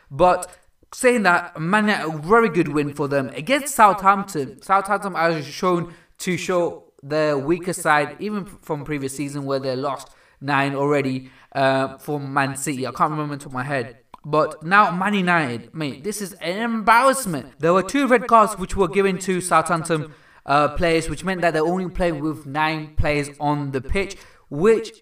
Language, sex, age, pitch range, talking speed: English, male, 20-39, 145-195 Hz, 175 wpm